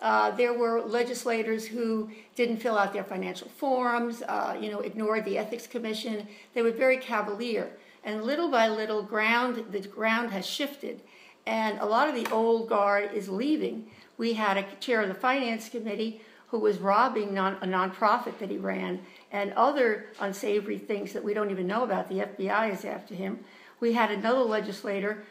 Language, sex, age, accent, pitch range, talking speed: English, female, 60-79, American, 205-235 Hz, 175 wpm